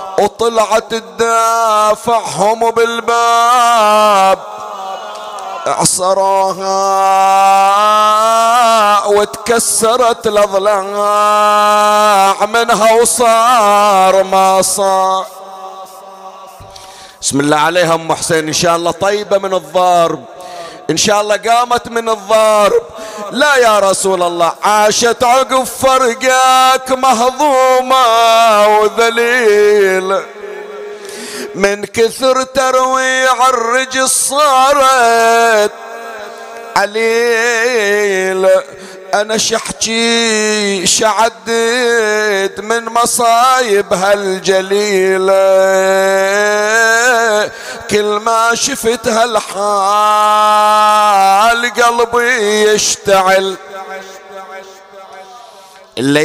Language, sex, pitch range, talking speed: Arabic, male, 190-230 Hz, 60 wpm